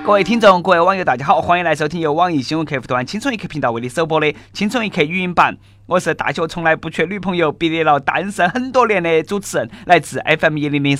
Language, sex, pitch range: Chinese, male, 140-200 Hz